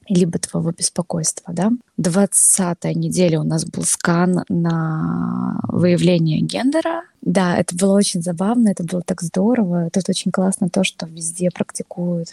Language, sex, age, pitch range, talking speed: Russian, female, 20-39, 170-195 Hz, 140 wpm